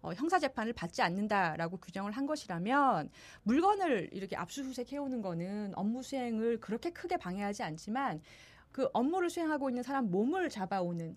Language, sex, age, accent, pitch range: Korean, female, 40-59, native, 190-275 Hz